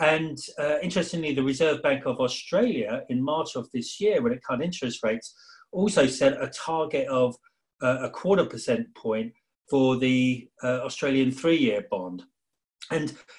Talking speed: 155 wpm